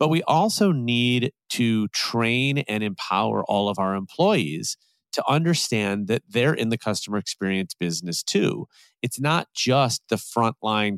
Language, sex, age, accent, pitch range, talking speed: English, male, 30-49, American, 105-130 Hz, 150 wpm